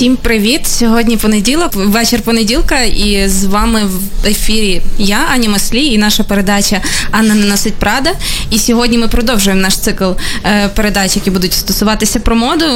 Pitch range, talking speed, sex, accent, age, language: 195-230 Hz, 155 wpm, female, native, 20-39, Ukrainian